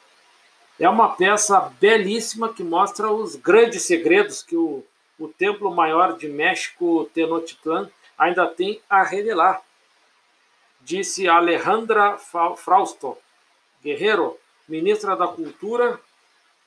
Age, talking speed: 50-69, 100 wpm